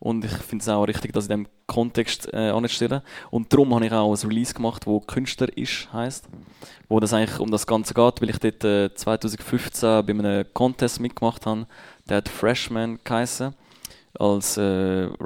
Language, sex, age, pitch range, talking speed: German, male, 20-39, 105-120 Hz, 185 wpm